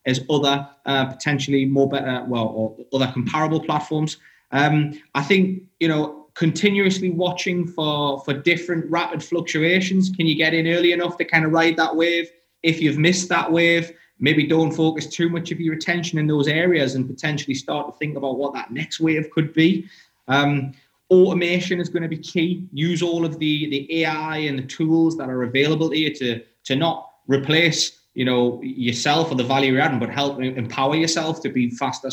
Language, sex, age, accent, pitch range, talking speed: English, male, 20-39, British, 130-165 Hz, 190 wpm